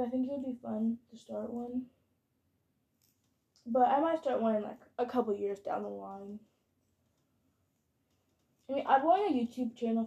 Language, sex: English, female